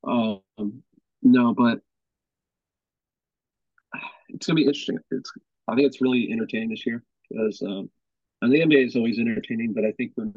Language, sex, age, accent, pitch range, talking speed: English, male, 40-59, American, 105-140 Hz, 155 wpm